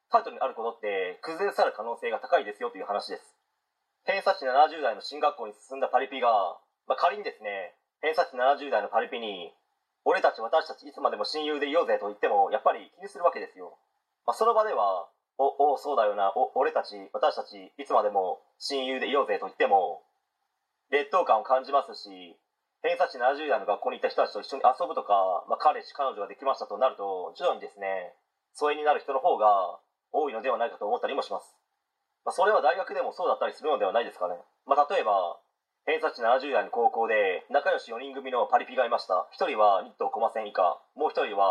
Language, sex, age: Japanese, male, 30-49